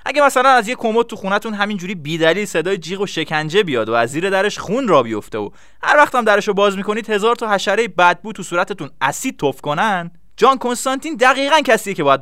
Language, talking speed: Persian, 210 wpm